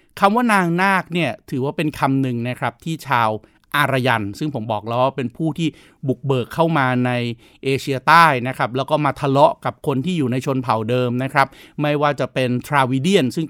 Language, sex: Thai, male